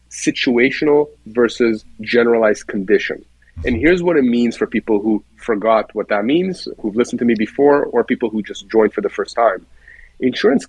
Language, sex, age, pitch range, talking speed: English, male, 40-59, 115-150 Hz, 175 wpm